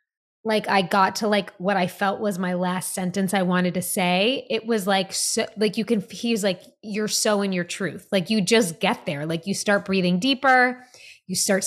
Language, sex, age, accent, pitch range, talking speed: English, female, 20-39, American, 185-240 Hz, 220 wpm